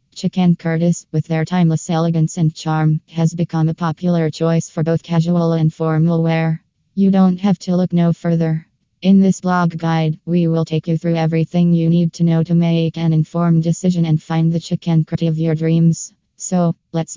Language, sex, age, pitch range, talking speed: English, female, 20-39, 165-180 Hz, 185 wpm